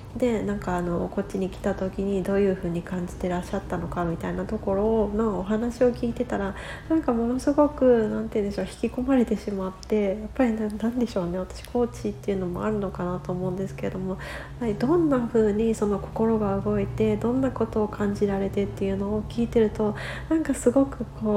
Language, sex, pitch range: Japanese, female, 185-225 Hz